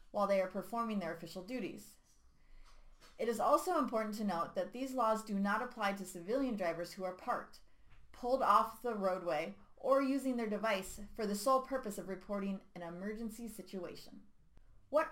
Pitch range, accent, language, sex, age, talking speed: 190-245 Hz, American, English, female, 30-49, 170 wpm